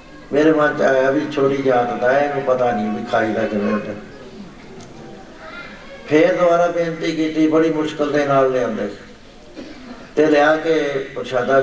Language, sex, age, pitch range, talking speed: Punjabi, male, 60-79, 125-155 Hz, 140 wpm